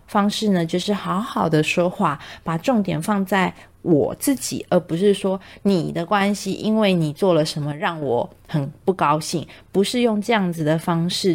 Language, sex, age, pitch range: Chinese, female, 30-49, 160-215 Hz